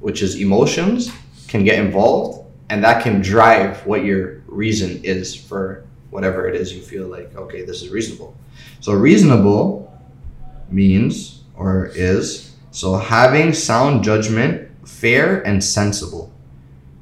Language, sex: English, male